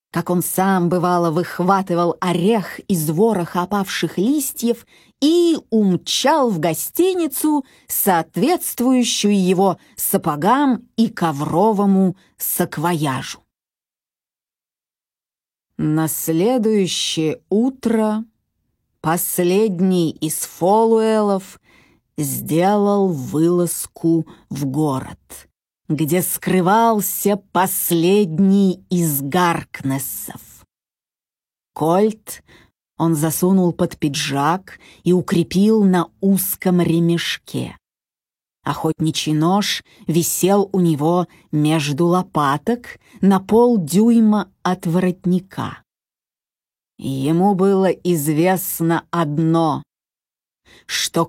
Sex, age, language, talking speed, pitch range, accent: female, 30-49, Russian, 70 wpm, 165-210 Hz, native